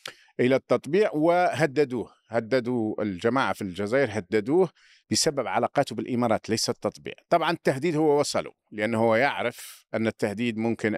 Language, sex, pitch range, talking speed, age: Arabic, male, 110-150 Hz, 120 wpm, 50-69